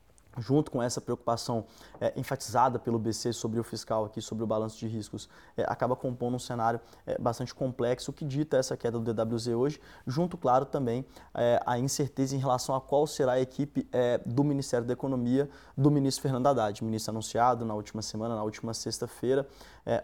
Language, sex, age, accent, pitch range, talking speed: Portuguese, male, 20-39, Brazilian, 110-130 Hz, 190 wpm